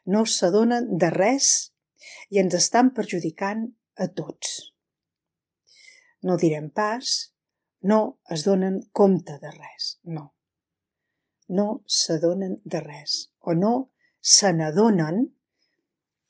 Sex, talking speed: female, 105 wpm